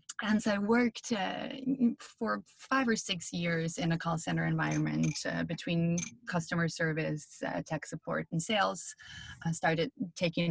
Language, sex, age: English, female, 20-39